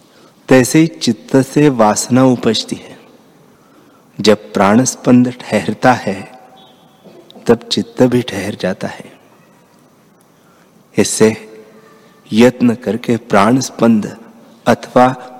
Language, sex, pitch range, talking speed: Hindi, male, 105-135 Hz, 85 wpm